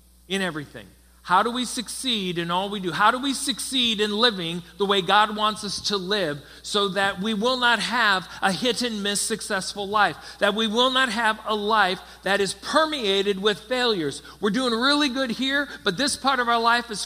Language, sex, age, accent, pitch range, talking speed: English, male, 50-69, American, 185-240 Hz, 210 wpm